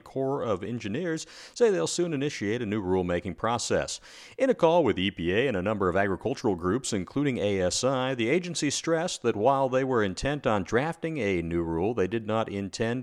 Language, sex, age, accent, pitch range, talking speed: English, male, 40-59, American, 105-140 Hz, 190 wpm